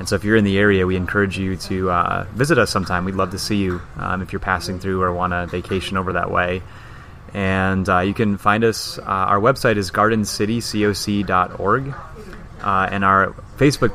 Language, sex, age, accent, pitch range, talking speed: English, male, 30-49, American, 95-105 Hz, 200 wpm